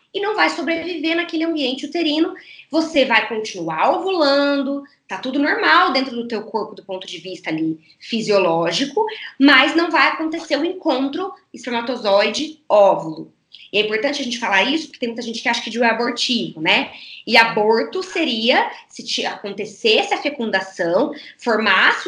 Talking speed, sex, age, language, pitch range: 155 wpm, female, 20-39, Portuguese, 220-315 Hz